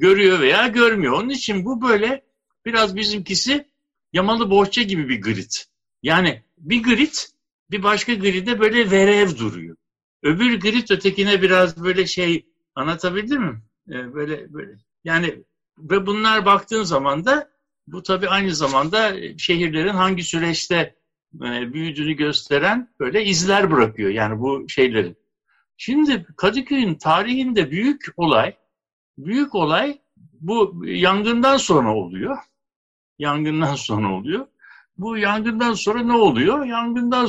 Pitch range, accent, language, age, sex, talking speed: 160-230 Hz, native, Turkish, 60-79, male, 120 wpm